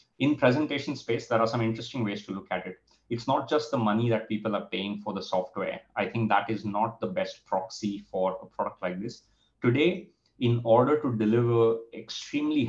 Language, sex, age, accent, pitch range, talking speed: English, male, 30-49, Indian, 95-115 Hz, 205 wpm